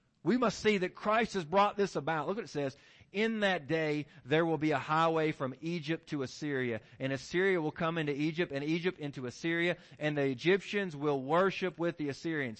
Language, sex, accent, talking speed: English, male, American, 205 wpm